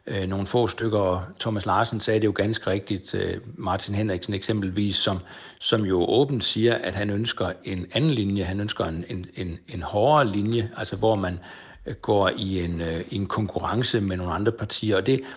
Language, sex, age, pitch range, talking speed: Danish, male, 60-79, 100-120 Hz, 175 wpm